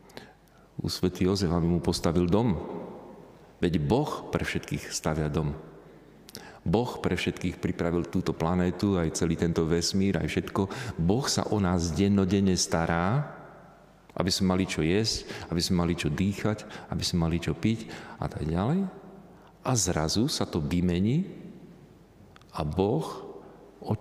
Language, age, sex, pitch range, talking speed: Slovak, 40-59, male, 85-105 Hz, 140 wpm